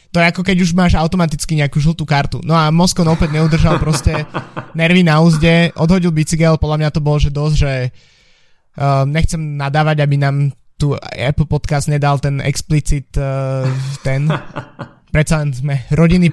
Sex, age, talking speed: male, 20-39, 170 wpm